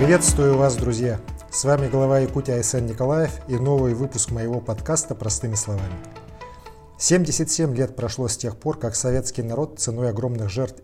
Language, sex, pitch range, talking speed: Russian, male, 105-135 Hz, 155 wpm